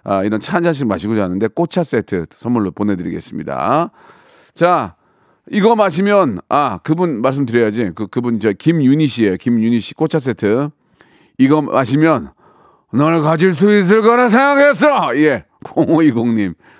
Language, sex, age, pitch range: Korean, male, 40-59, 115-170 Hz